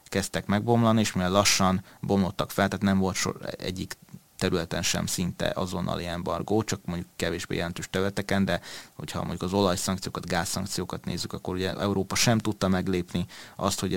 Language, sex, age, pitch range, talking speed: Hungarian, male, 30-49, 90-105 Hz, 160 wpm